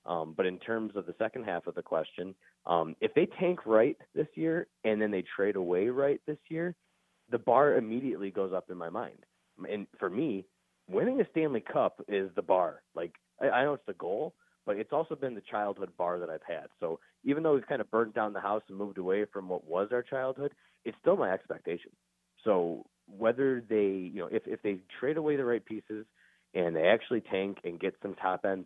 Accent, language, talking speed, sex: American, English, 220 wpm, male